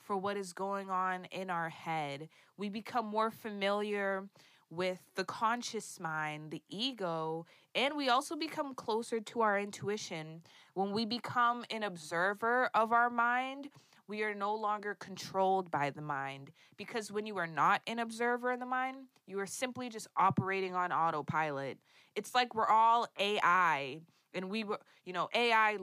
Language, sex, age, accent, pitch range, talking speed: English, female, 20-39, American, 175-225 Hz, 165 wpm